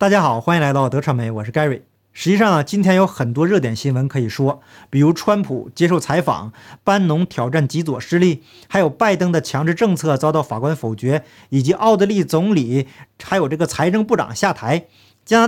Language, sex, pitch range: Chinese, male, 135-195 Hz